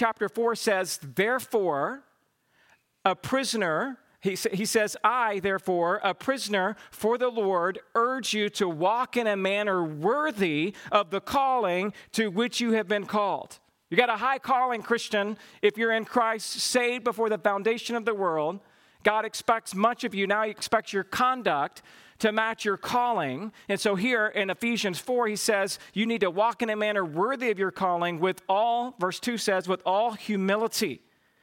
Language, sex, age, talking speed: English, male, 50-69, 175 wpm